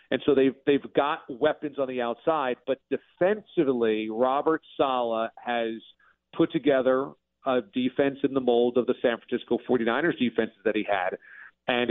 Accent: American